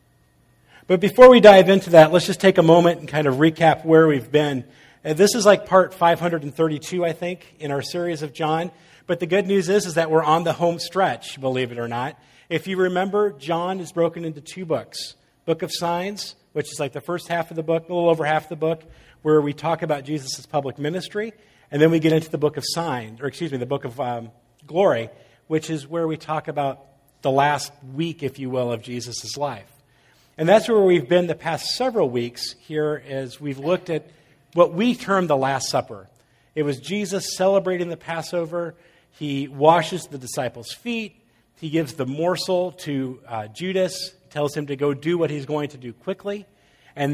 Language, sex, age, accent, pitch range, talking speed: English, male, 40-59, American, 140-175 Hz, 210 wpm